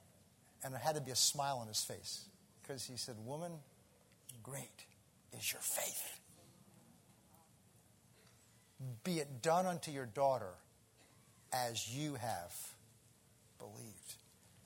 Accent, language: American, English